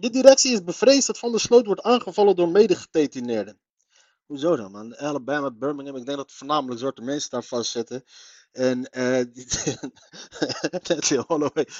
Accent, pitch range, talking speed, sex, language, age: Dutch, 140-235 Hz, 155 wpm, male, Dutch, 30-49